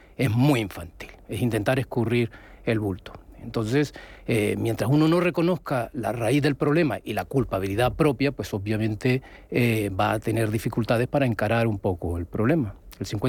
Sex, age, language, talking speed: male, 40-59, Spanish, 165 wpm